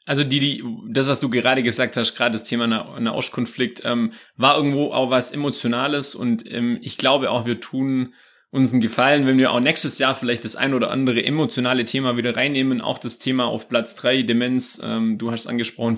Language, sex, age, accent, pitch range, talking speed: German, male, 30-49, German, 120-150 Hz, 210 wpm